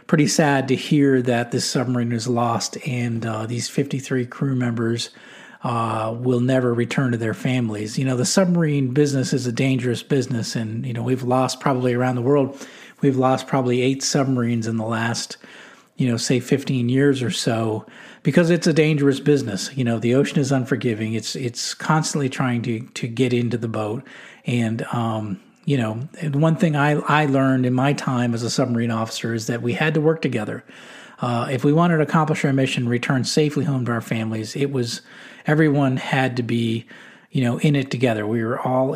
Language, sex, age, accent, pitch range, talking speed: English, male, 40-59, American, 120-145 Hz, 195 wpm